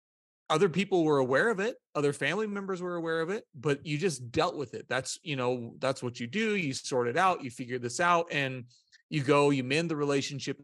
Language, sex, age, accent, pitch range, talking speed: English, male, 30-49, American, 130-160 Hz, 230 wpm